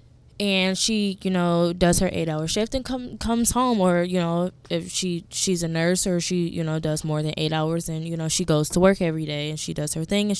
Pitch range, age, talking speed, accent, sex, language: 160-200 Hz, 10-29, 260 wpm, American, female, English